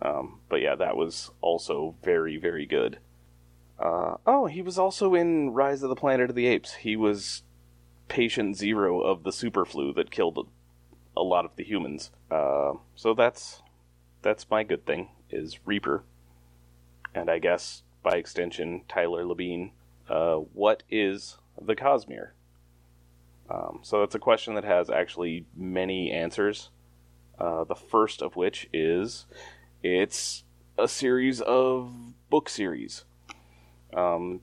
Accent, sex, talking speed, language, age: American, male, 140 wpm, English, 30-49